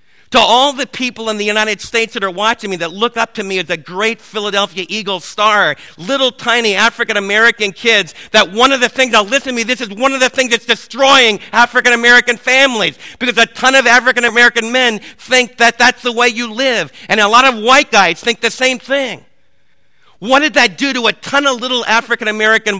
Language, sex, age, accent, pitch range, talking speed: English, male, 50-69, American, 205-250 Hz, 210 wpm